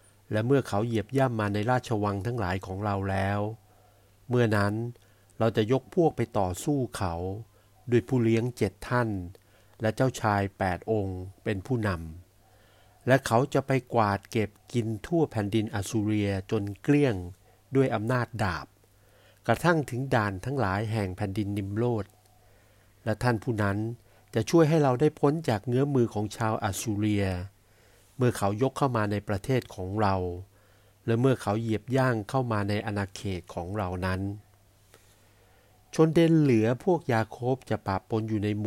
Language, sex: Thai, male